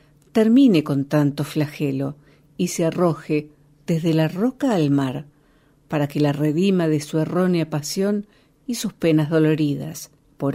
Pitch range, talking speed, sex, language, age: 145-180 Hz, 140 wpm, female, Spanish, 50-69